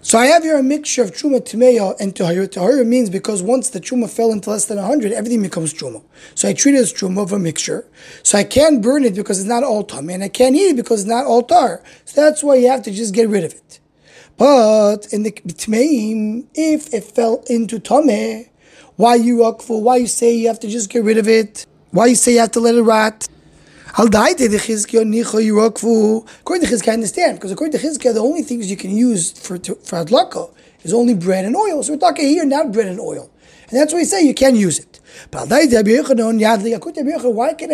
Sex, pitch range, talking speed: male, 220-270 Hz, 220 wpm